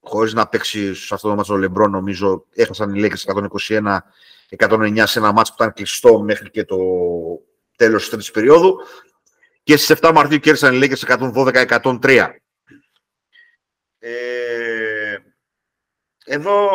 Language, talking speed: Greek, 125 wpm